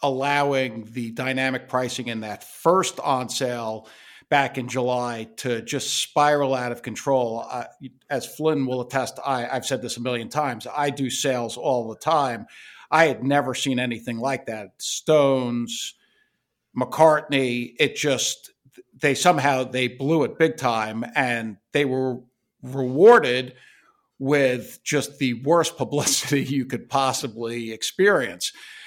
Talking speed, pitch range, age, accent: 135 wpm, 120-155 Hz, 50-69, American